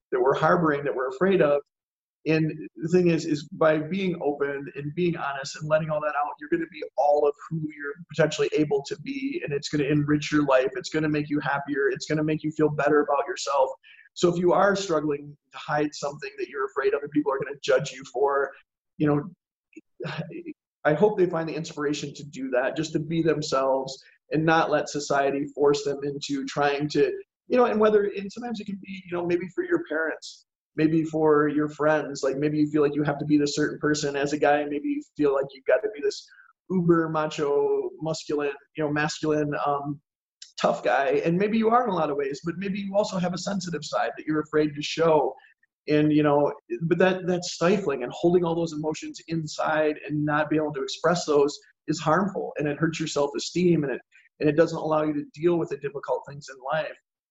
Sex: male